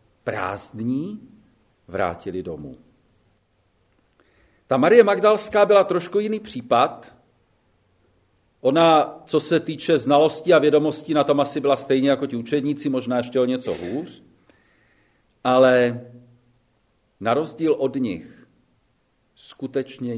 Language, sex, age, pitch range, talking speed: Czech, male, 50-69, 120-160 Hz, 105 wpm